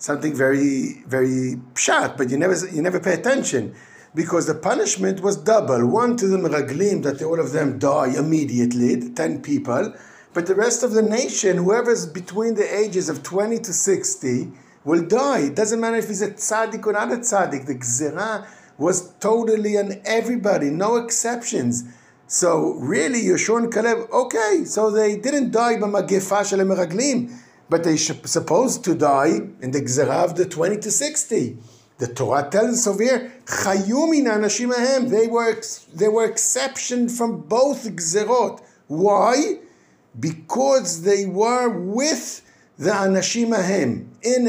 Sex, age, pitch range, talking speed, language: male, 50-69, 160-230 Hz, 145 wpm, English